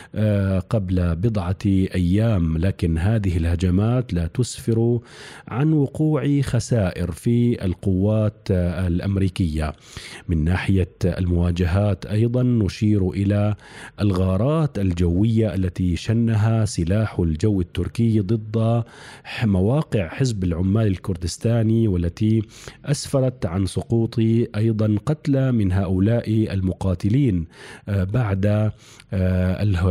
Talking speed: 85 wpm